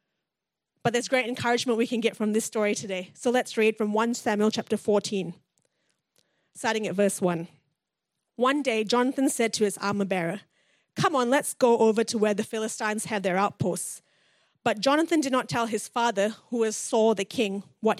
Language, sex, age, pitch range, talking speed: English, female, 30-49, 200-250 Hz, 185 wpm